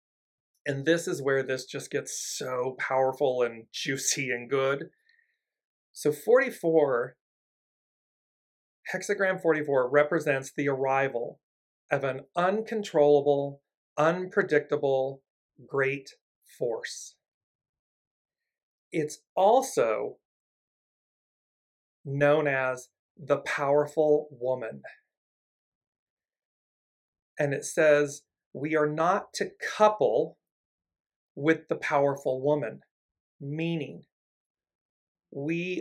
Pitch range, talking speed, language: 140-170 Hz, 80 wpm, English